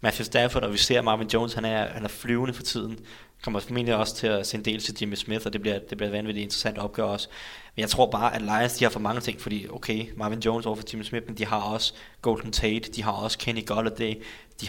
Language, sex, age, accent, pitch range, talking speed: Danish, male, 20-39, native, 105-115 Hz, 255 wpm